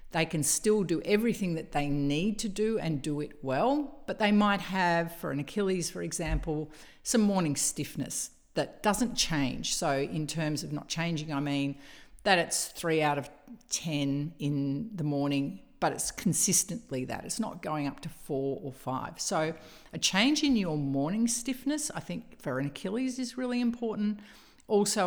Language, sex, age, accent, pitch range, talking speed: English, female, 50-69, Australian, 140-200 Hz, 175 wpm